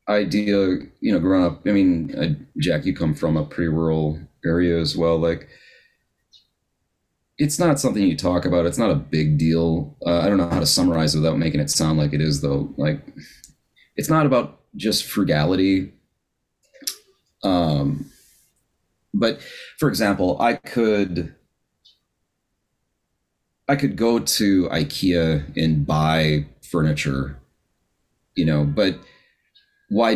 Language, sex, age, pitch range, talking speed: English, male, 30-49, 75-95 Hz, 135 wpm